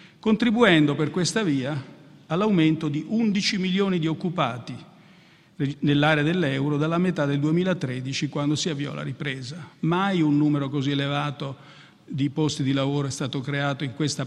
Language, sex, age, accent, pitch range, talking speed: Italian, male, 50-69, native, 145-180 Hz, 145 wpm